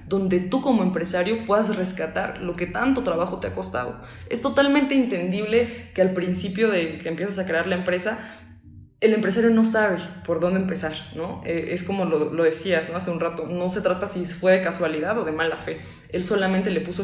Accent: Mexican